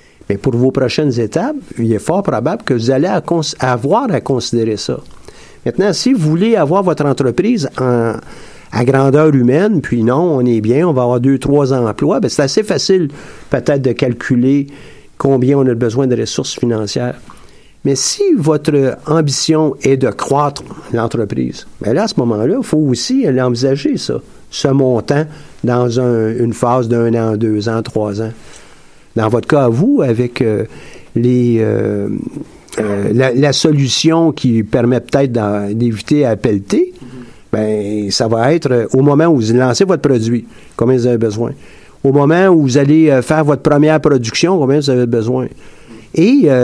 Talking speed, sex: 165 wpm, male